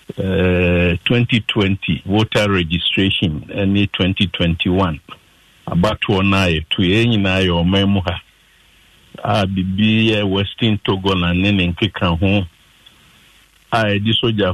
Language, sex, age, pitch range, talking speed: English, male, 50-69, 95-110 Hz, 110 wpm